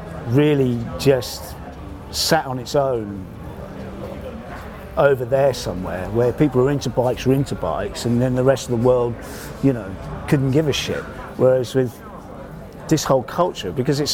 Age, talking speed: 50-69, 155 wpm